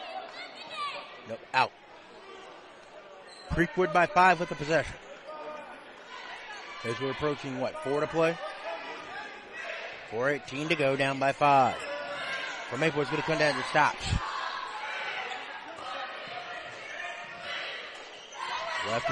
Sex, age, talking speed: male, 30-49, 95 wpm